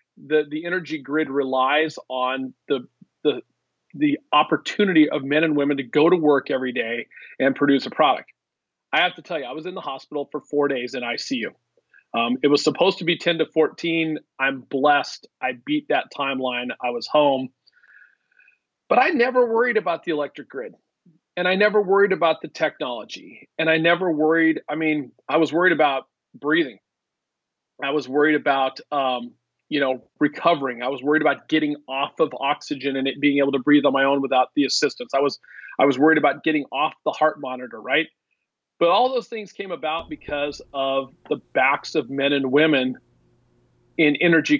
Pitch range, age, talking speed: 135-165 Hz, 40-59, 185 wpm